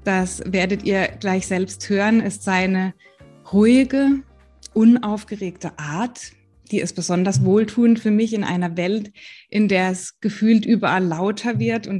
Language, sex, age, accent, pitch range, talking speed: German, female, 20-39, German, 185-220 Hz, 140 wpm